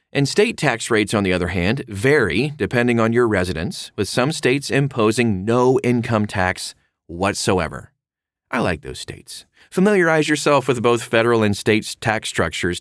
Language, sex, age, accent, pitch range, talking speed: English, male, 30-49, American, 100-140 Hz, 160 wpm